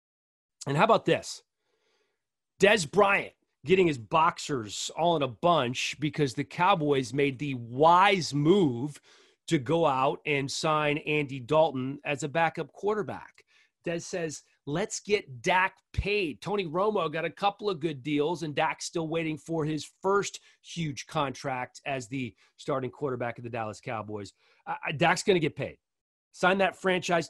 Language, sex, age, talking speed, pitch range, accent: English, male, 30-49, 155 wpm, 125-165 Hz, American